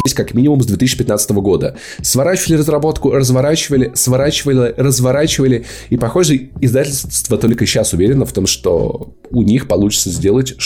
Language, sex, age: Russian, male, 20-39